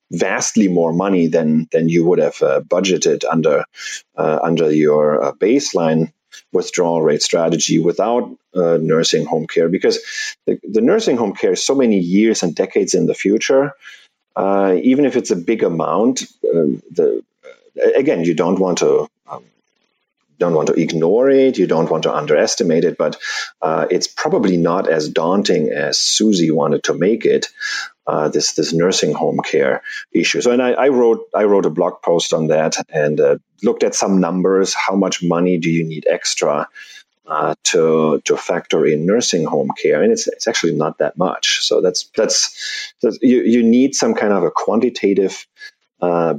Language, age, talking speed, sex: English, 40-59, 180 wpm, male